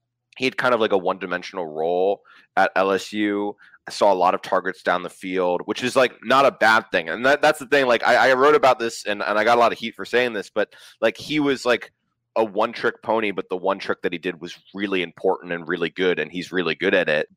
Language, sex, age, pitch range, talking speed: English, male, 20-39, 85-115 Hz, 260 wpm